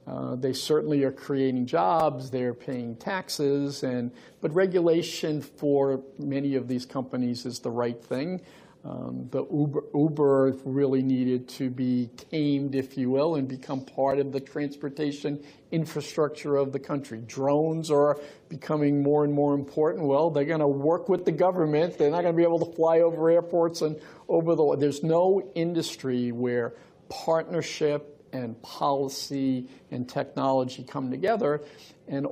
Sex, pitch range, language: male, 130-155 Hz, English